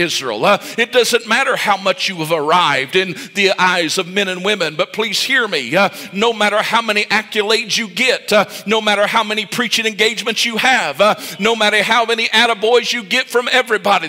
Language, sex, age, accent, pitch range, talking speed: English, male, 50-69, American, 205-240 Hz, 205 wpm